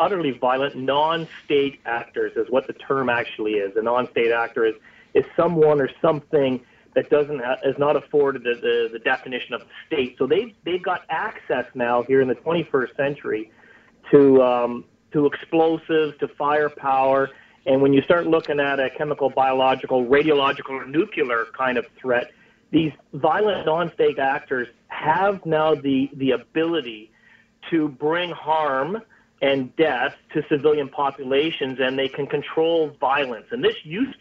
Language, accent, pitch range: English, American, 135-165 Hz